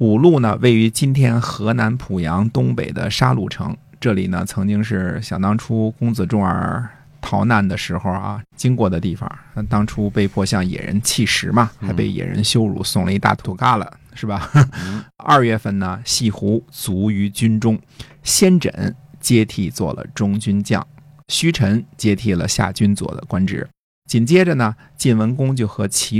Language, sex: Chinese, male